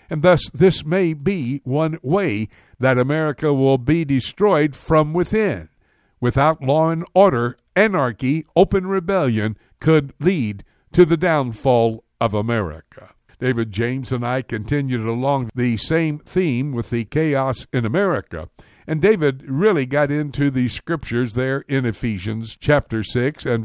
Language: English